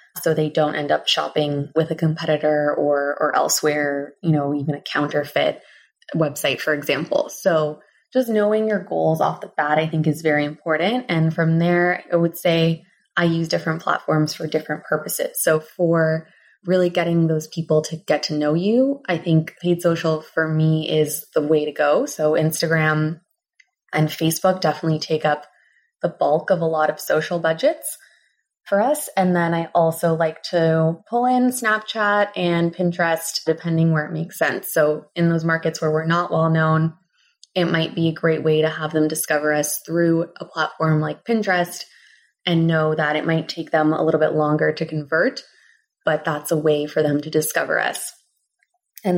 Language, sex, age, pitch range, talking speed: English, female, 20-39, 155-175 Hz, 180 wpm